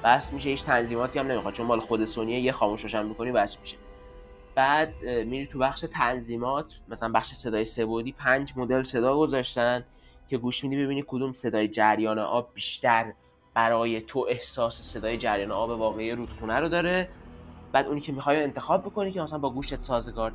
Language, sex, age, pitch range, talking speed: Persian, male, 20-39, 110-135 Hz, 175 wpm